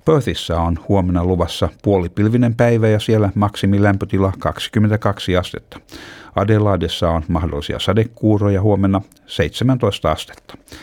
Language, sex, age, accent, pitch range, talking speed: Finnish, male, 60-79, native, 85-105 Hz, 100 wpm